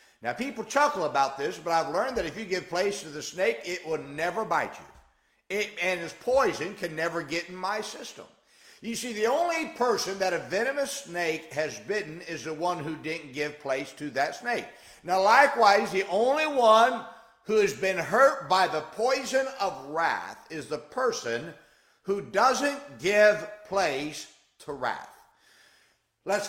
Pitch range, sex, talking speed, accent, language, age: 150-225 Hz, male, 170 wpm, American, English, 50-69